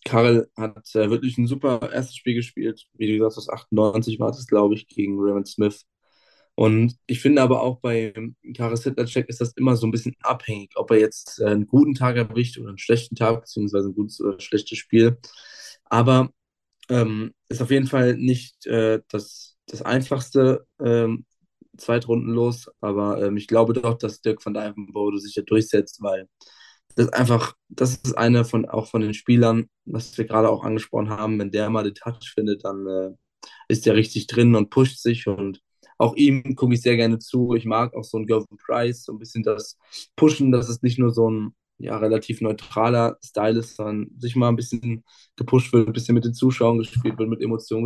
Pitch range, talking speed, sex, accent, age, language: 110-125 Hz, 200 wpm, male, German, 20-39, German